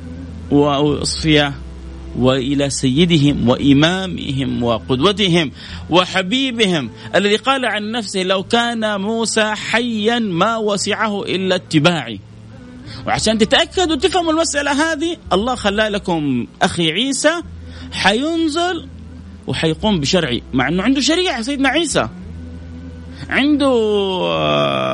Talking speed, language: 90 wpm, Arabic